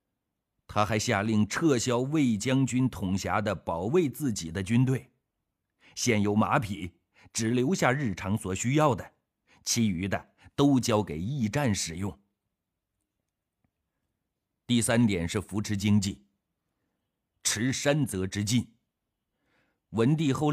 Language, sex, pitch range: Chinese, male, 95-125 Hz